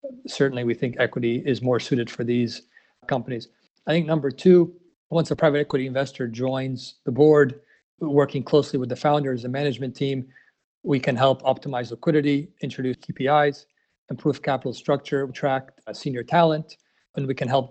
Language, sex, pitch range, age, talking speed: English, male, 130-145 Hz, 40-59, 165 wpm